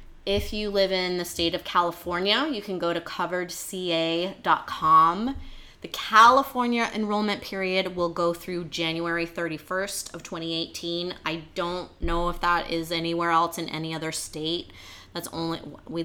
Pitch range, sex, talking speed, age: 165-195 Hz, female, 145 wpm, 20-39